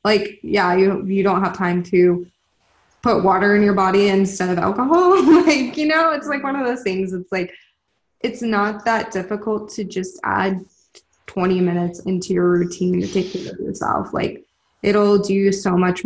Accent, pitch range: American, 180-210 Hz